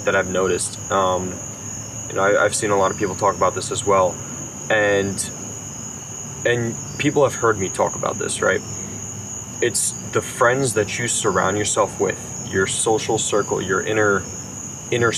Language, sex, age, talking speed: English, male, 20-39, 165 wpm